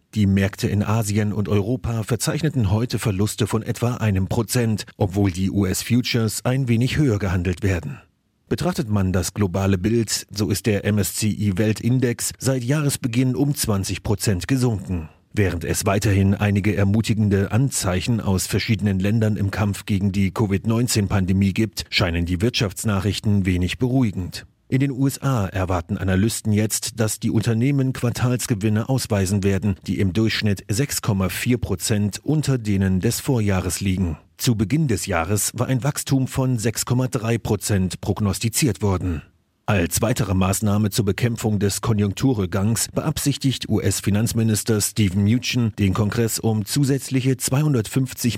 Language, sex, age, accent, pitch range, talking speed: German, male, 40-59, German, 100-120 Hz, 130 wpm